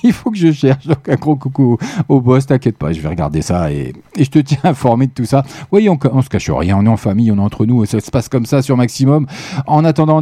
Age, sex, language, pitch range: 40-59, male, French, 105-145 Hz